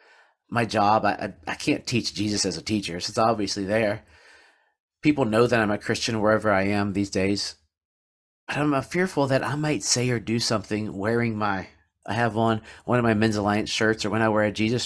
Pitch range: 95-135 Hz